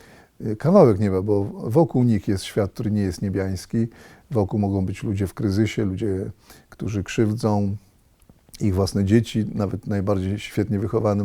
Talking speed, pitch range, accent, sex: 145 wpm, 100-115 Hz, native, male